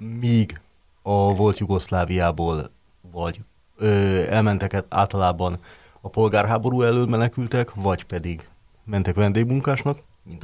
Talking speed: 90 wpm